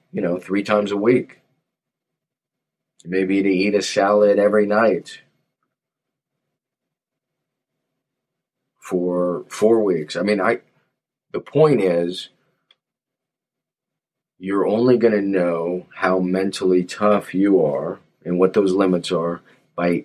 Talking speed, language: 115 wpm, English